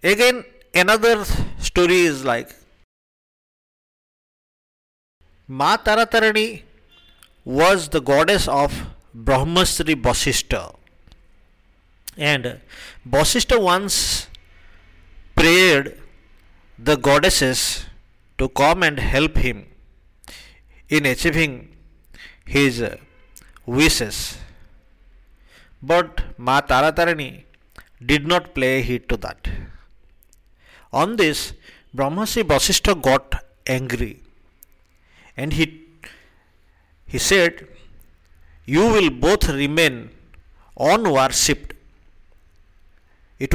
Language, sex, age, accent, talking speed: English, male, 50-69, Indian, 75 wpm